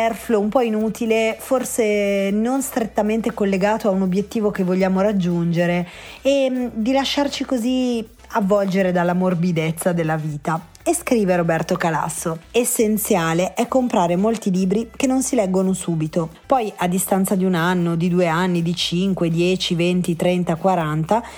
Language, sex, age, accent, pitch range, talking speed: Italian, female, 30-49, native, 170-220 Hz, 145 wpm